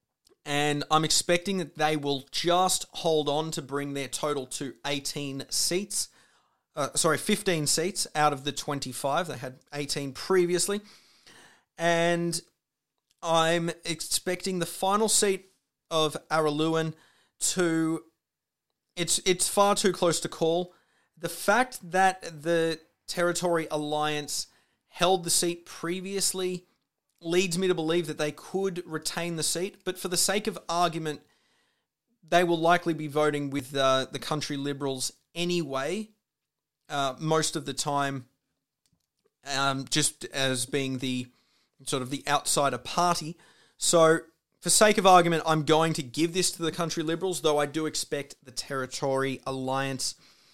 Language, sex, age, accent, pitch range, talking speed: English, male, 30-49, Australian, 145-175 Hz, 140 wpm